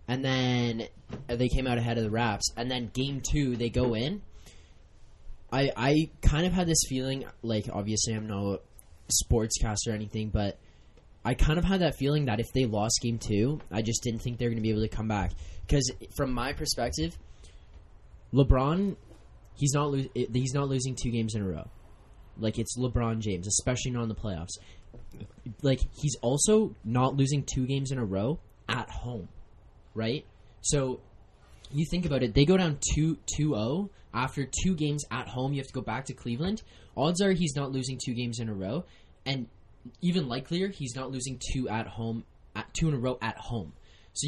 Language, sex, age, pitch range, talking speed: English, male, 10-29, 110-140 Hz, 185 wpm